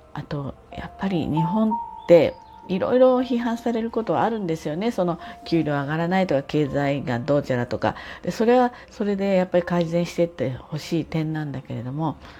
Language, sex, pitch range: Japanese, female, 145-205 Hz